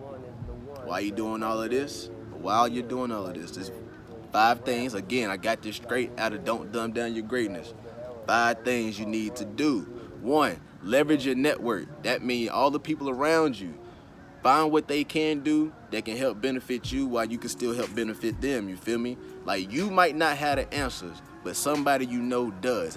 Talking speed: 200 wpm